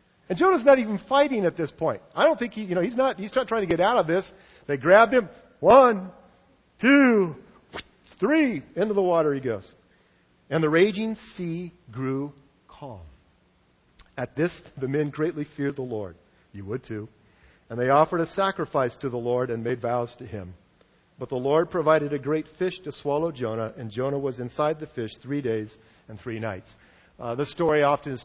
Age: 50-69